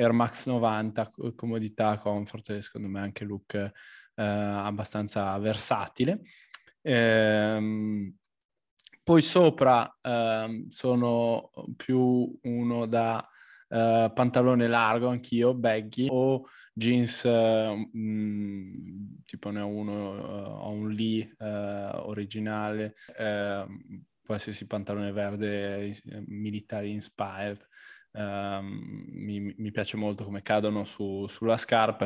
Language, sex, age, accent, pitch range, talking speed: Italian, male, 10-29, native, 105-120 Hz, 95 wpm